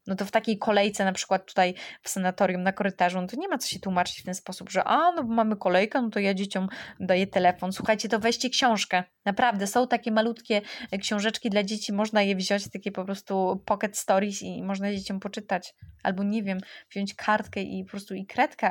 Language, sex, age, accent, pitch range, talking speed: Polish, female, 20-39, native, 185-215 Hz, 220 wpm